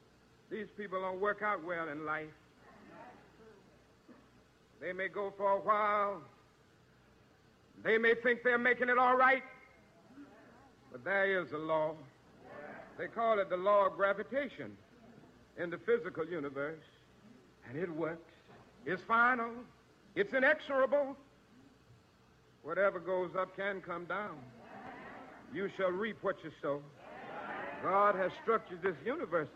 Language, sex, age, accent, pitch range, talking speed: English, male, 60-79, American, 170-225 Hz, 125 wpm